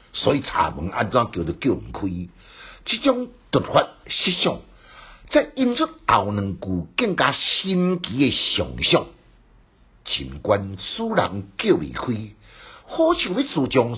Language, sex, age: Chinese, male, 60-79